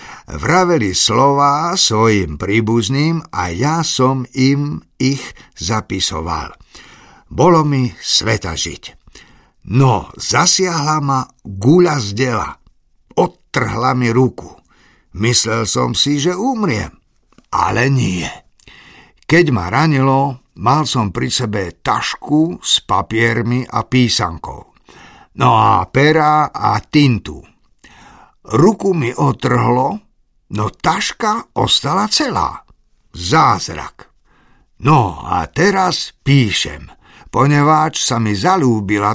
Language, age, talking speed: Slovak, 60-79, 95 wpm